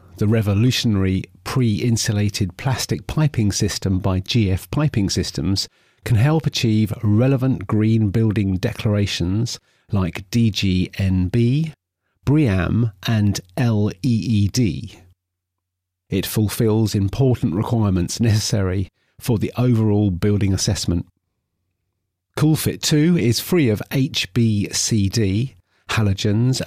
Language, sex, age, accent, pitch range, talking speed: English, male, 50-69, British, 95-120 Hz, 85 wpm